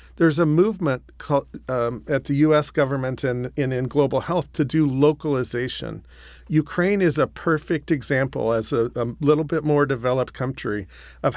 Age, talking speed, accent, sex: 40-59, 160 wpm, American, male